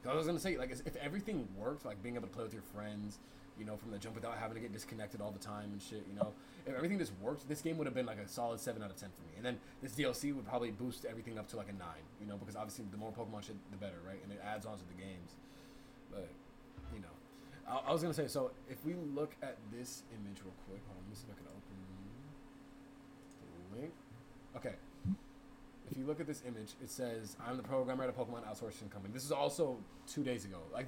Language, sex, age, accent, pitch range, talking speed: English, male, 20-39, American, 100-130 Hz, 265 wpm